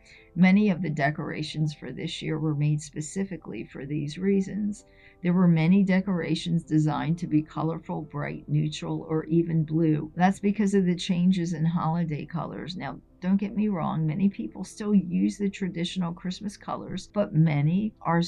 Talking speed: 165 wpm